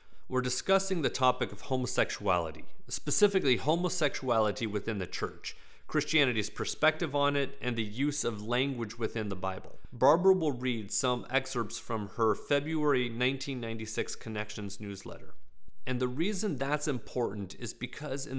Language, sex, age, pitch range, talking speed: English, male, 40-59, 115-150 Hz, 135 wpm